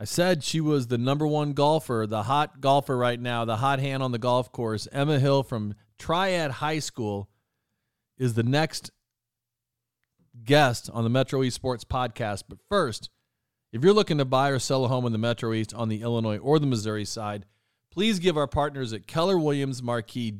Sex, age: male, 40-59